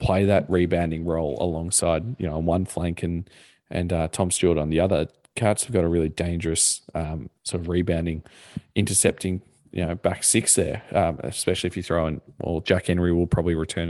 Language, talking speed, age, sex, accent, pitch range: English, 200 wpm, 20-39, male, Australian, 85-95 Hz